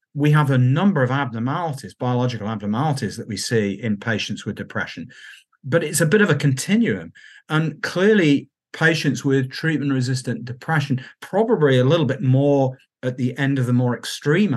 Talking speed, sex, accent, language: 170 wpm, male, British, English